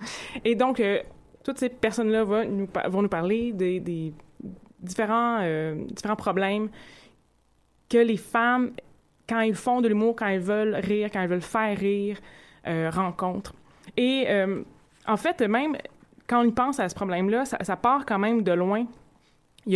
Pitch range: 180-225 Hz